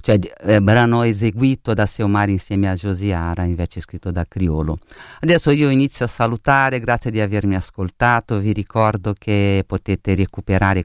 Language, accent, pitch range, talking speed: Italian, native, 100-115 Hz, 145 wpm